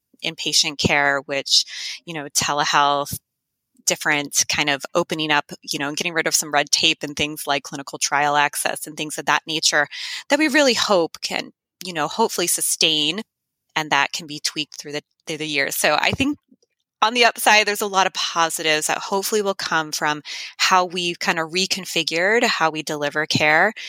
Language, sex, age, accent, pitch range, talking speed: English, female, 20-39, American, 150-200 Hz, 190 wpm